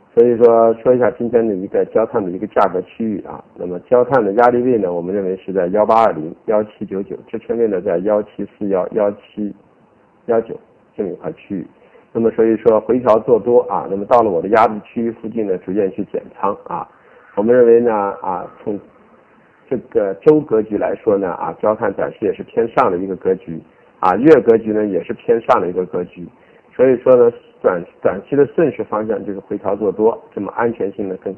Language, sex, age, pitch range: Chinese, male, 50-69, 100-125 Hz